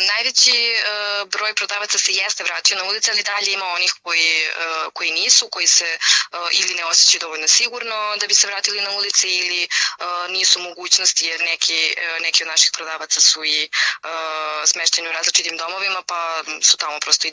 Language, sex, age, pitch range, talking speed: Croatian, female, 20-39, 165-195 Hz, 165 wpm